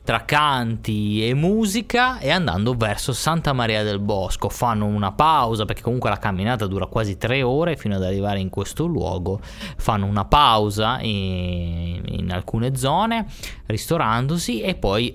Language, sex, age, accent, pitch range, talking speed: Italian, male, 20-39, native, 105-140 Hz, 150 wpm